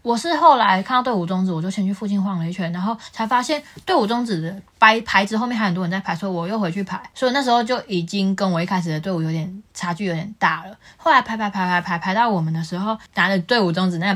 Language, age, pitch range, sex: Chinese, 20-39, 170-215 Hz, female